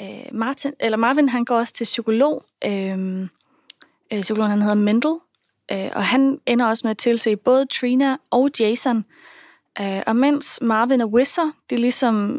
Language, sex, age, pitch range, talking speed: Danish, female, 30-49, 205-270 Hz, 165 wpm